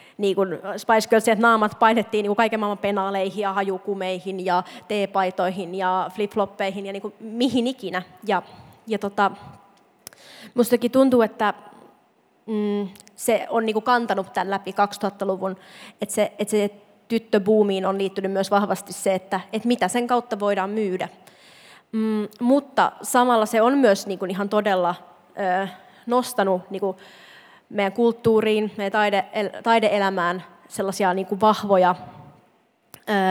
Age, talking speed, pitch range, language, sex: 20-39, 130 wpm, 195-220 Hz, Finnish, female